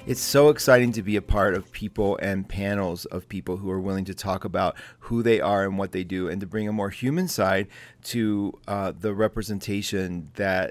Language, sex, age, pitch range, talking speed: English, male, 40-59, 100-120 Hz, 215 wpm